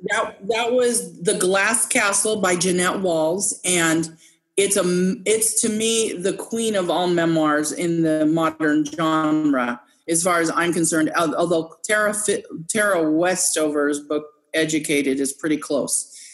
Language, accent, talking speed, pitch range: English, American, 140 wpm, 165-210 Hz